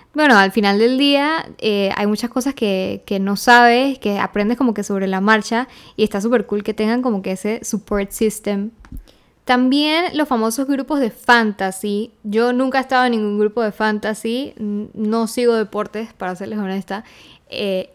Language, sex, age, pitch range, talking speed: Spanish, female, 10-29, 195-230 Hz, 175 wpm